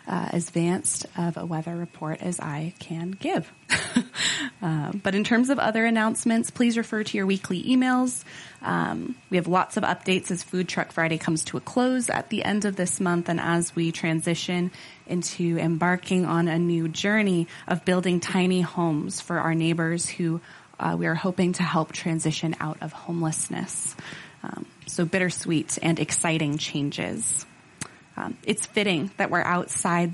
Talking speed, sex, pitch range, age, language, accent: 165 wpm, female, 165-200 Hz, 20-39, English, American